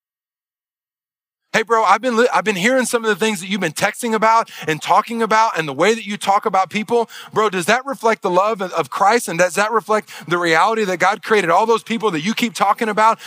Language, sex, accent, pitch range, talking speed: English, male, American, 155-220 Hz, 240 wpm